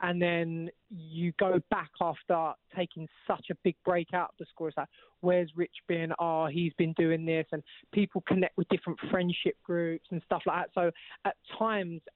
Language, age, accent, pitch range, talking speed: English, 20-39, British, 160-185 Hz, 195 wpm